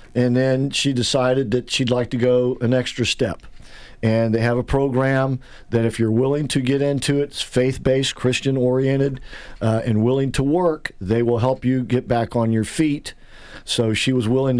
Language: English